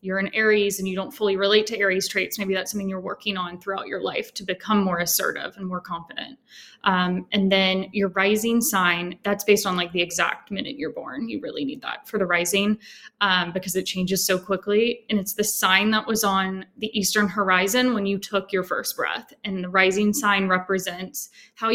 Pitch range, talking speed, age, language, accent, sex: 190-215 Hz, 210 wpm, 10-29, English, American, female